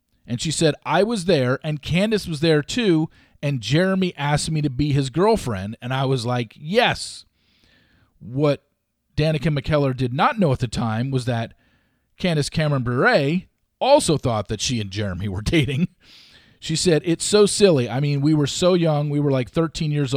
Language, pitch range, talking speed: English, 115-155 Hz, 185 wpm